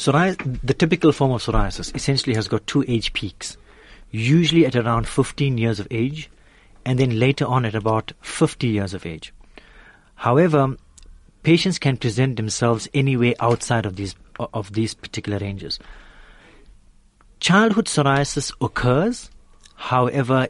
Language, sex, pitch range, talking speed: English, male, 110-140 Hz, 130 wpm